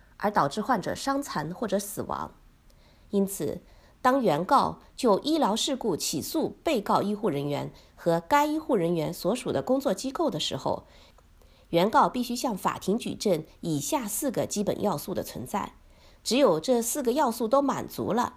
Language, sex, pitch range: Chinese, female, 160-260 Hz